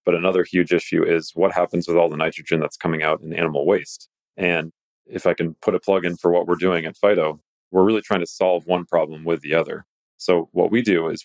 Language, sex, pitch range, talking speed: English, male, 80-90 Hz, 245 wpm